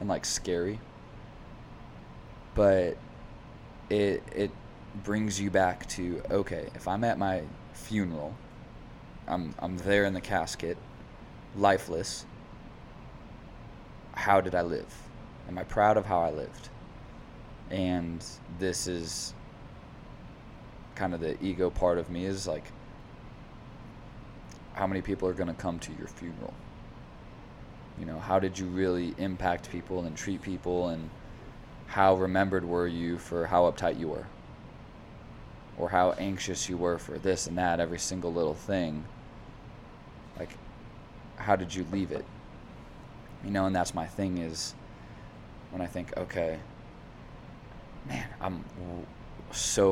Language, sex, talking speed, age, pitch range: English, male, 130 wpm, 20-39, 85-95 Hz